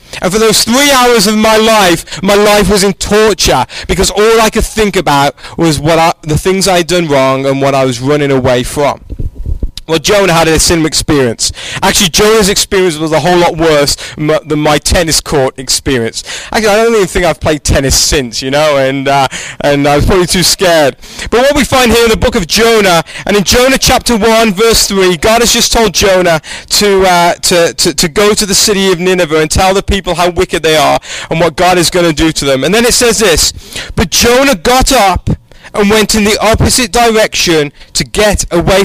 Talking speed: 220 wpm